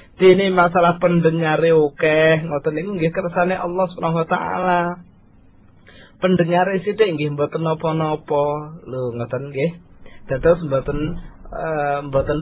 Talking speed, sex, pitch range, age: 130 wpm, male, 135-170 Hz, 20-39